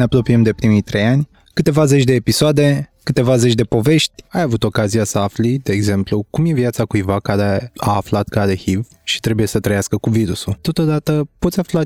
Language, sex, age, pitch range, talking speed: Romanian, male, 20-39, 105-140 Hz, 195 wpm